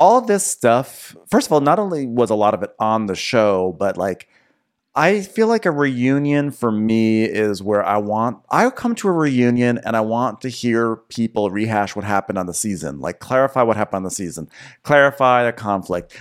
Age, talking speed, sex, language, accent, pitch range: 30-49, 210 wpm, male, English, American, 105-145 Hz